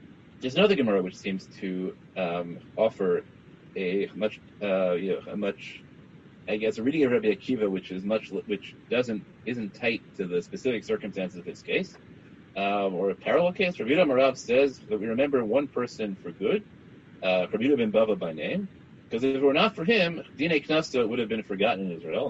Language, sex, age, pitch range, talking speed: English, male, 30-49, 105-155 Hz, 195 wpm